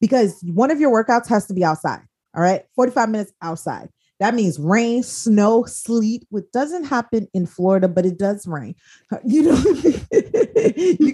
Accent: American